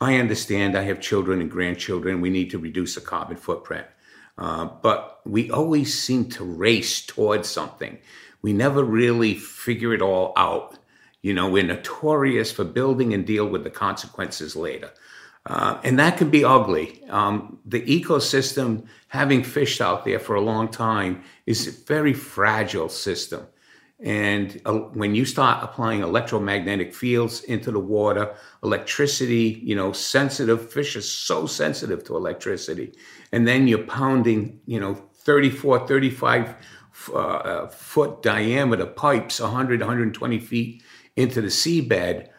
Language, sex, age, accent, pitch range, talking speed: English, male, 50-69, American, 105-130 Hz, 145 wpm